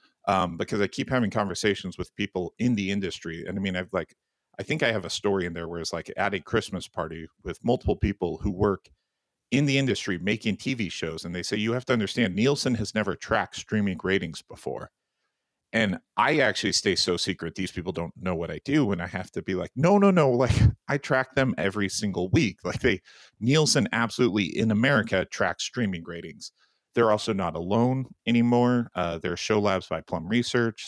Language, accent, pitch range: English, American, 90-115 Hz